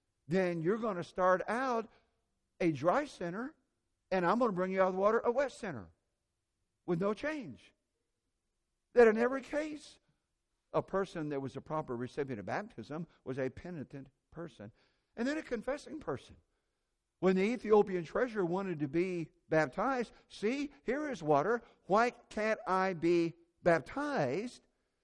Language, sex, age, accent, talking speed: English, male, 60-79, American, 155 wpm